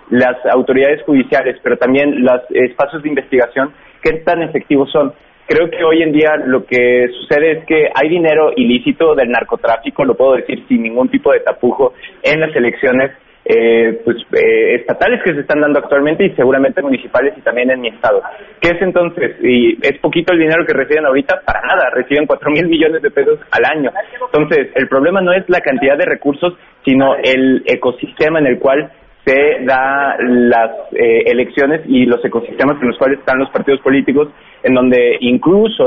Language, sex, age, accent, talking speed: Spanish, male, 30-49, Mexican, 185 wpm